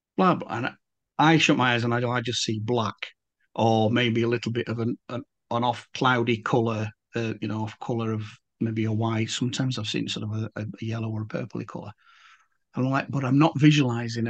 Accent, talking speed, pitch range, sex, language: British, 220 wpm, 110-130 Hz, male, English